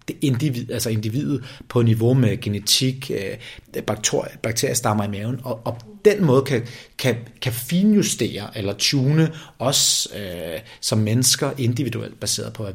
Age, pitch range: 30-49, 110-135 Hz